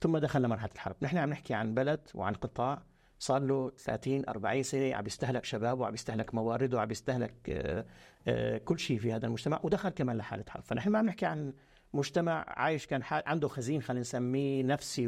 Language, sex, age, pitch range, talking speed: Arabic, male, 50-69, 115-145 Hz, 185 wpm